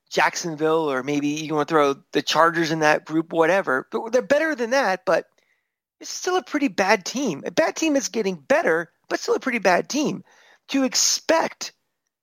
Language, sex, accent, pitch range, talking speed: English, male, American, 170-250 Hz, 190 wpm